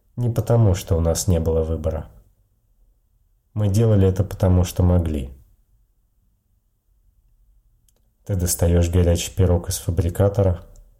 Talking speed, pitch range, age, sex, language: 110 wpm, 85-100 Hz, 30-49, male, Russian